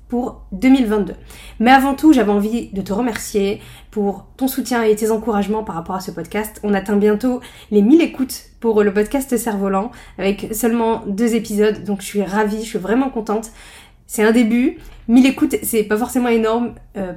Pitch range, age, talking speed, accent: 205-245 Hz, 20-39, 190 wpm, French